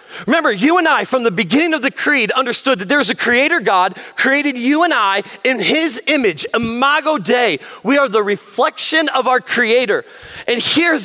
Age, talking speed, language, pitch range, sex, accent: 30-49, 185 wpm, English, 185-270 Hz, male, American